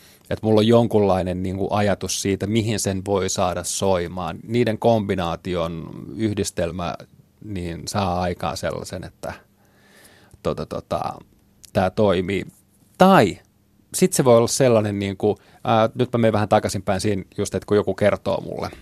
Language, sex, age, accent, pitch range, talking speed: Finnish, male, 30-49, native, 95-115 Hz, 140 wpm